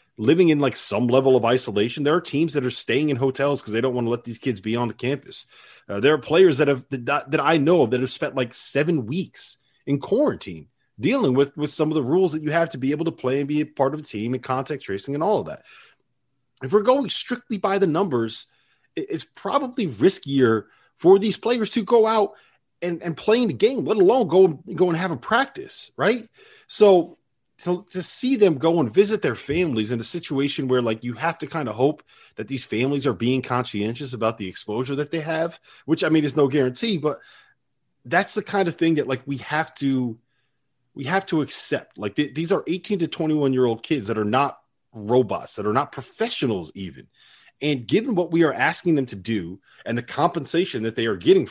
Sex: male